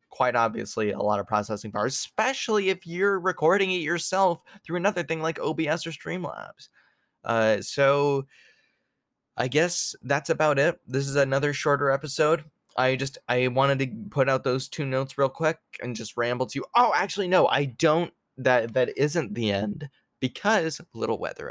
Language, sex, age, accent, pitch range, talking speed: English, male, 10-29, American, 120-165 Hz, 175 wpm